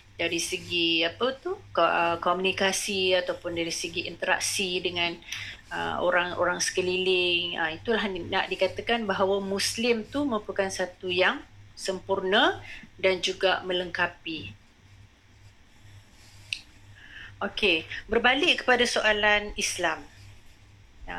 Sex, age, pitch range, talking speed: female, 30-49, 170-210 Hz, 85 wpm